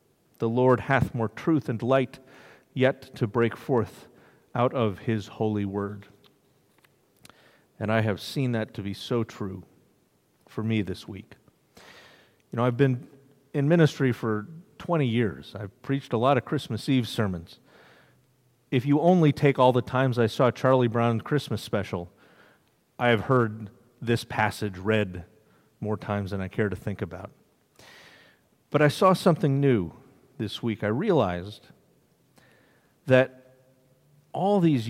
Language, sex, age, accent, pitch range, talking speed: English, male, 40-59, American, 105-130 Hz, 145 wpm